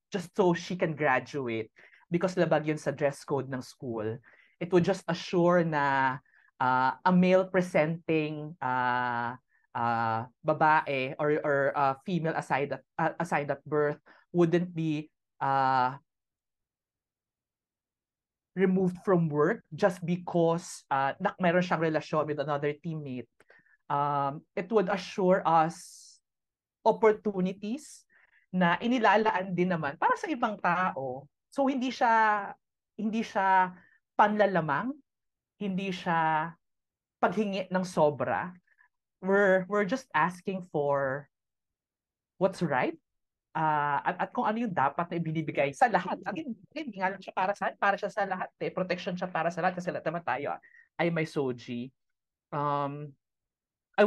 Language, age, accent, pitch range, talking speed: Filipino, 20-39, native, 145-195 Hz, 130 wpm